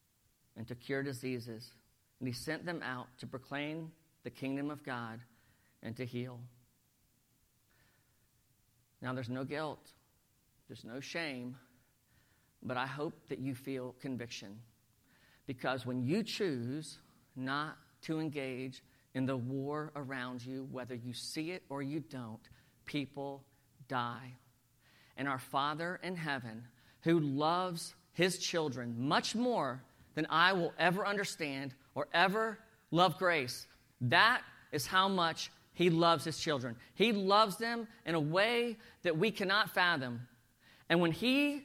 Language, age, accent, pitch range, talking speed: English, 50-69, American, 125-205 Hz, 135 wpm